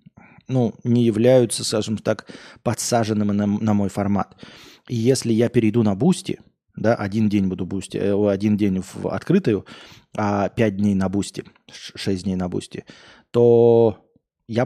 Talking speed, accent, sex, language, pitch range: 145 wpm, native, male, Russian, 100-130 Hz